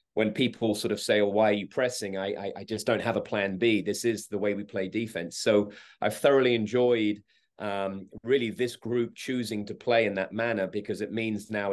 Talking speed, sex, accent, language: 225 wpm, male, British, English